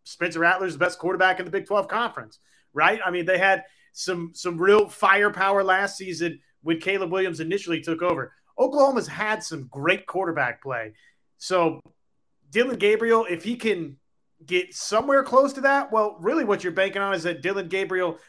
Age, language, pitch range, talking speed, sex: 30-49, English, 170-200 Hz, 175 wpm, male